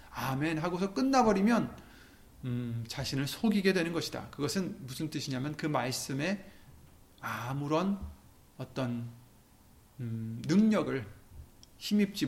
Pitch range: 125-200 Hz